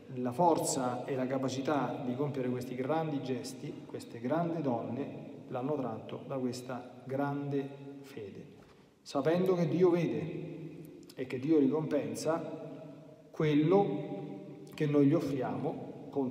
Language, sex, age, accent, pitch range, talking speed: Italian, male, 40-59, native, 125-155 Hz, 120 wpm